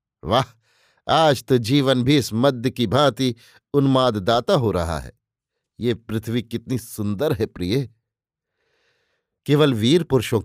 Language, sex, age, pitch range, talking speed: Hindi, male, 50-69, 115-140 Hz, 125 wpm